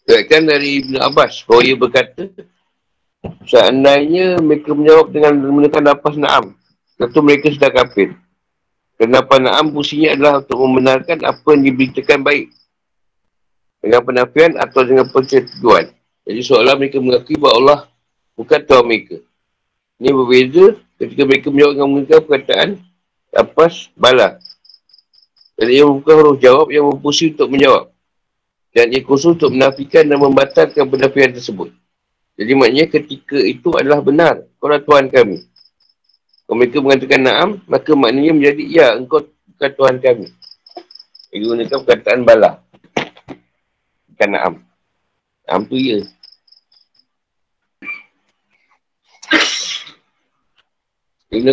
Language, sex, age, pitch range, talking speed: Malay, male, 50-69, 130-155 Hz, 120 wpm